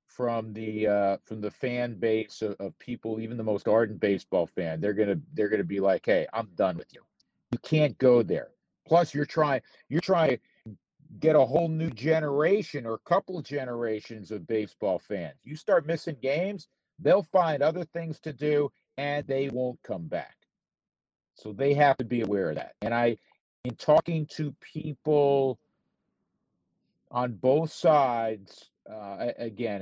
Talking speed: 165 wpm